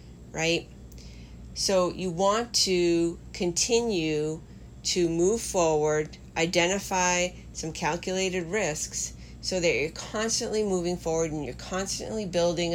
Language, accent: English, American